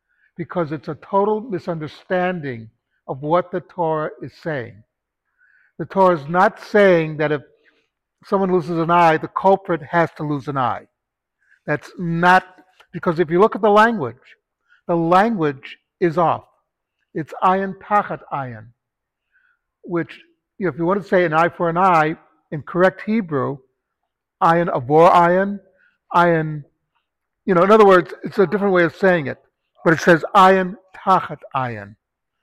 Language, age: English, 60-79